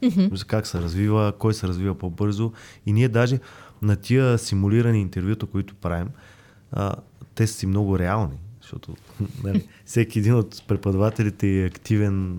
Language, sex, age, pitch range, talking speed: Bulgarian, male, 20-39, 100-120 Hz, 135 wpm